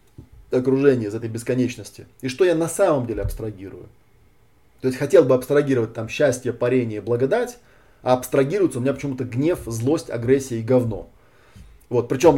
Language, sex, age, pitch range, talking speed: Russian, male, 20-39, 110-130 Hz, 155 wpm